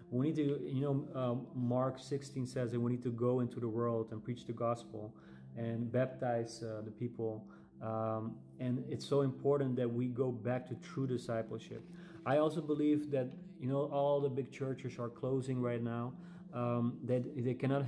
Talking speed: 190 wpm